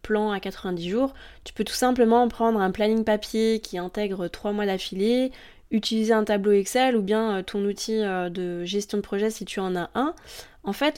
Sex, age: female, 20-39